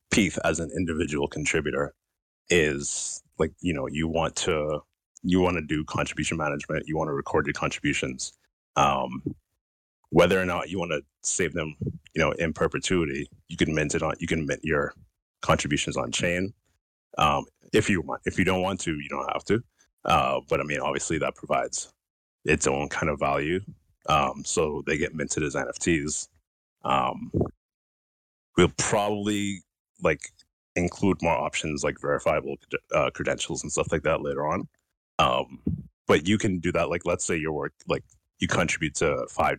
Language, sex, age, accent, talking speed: English, male, 30-49, American, 170 wpm